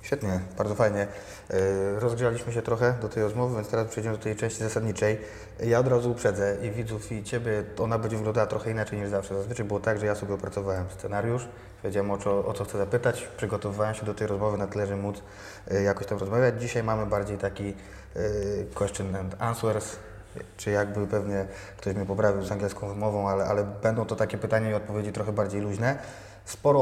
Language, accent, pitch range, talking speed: Polish, native, 100-115 Hz, 195 wpm